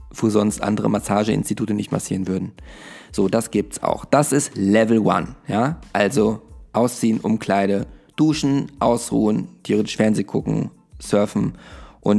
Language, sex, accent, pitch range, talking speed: German, male, German, 110-135 Hz, 135 wpm